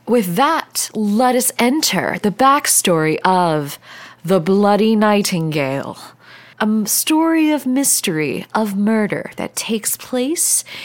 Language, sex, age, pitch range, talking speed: English, female, 20-39, 180-275 Hz, 110 wpm